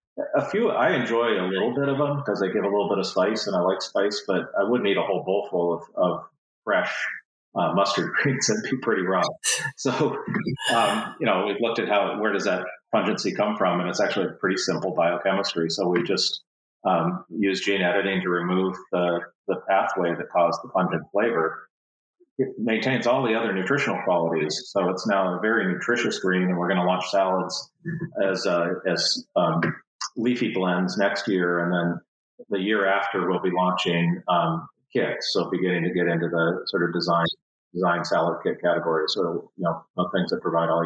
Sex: male